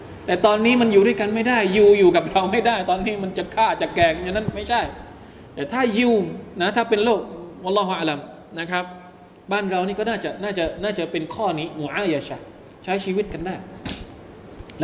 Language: Thai